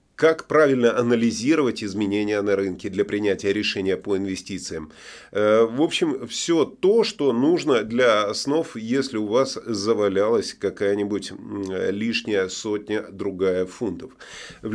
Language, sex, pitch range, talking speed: Russian, male, 105-140 Hz, 115 wpm